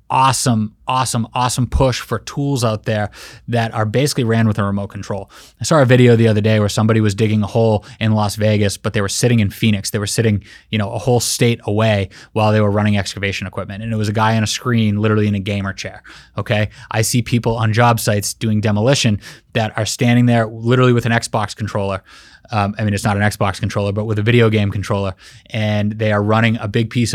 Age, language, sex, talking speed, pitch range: 20-39, English, male, 230 wpm, 105-120 Hz